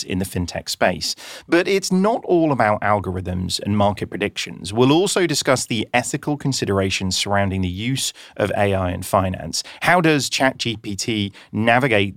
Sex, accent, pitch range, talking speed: male, British, 95-140 Hz, 150 wpm